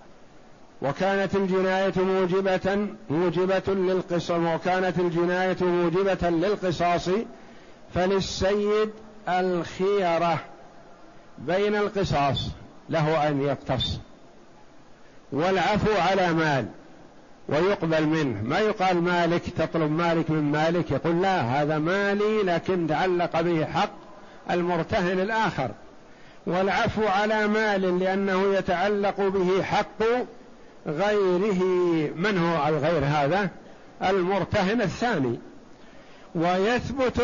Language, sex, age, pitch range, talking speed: Arabic, male, 50-69, 165-200 Hz, 85 wpm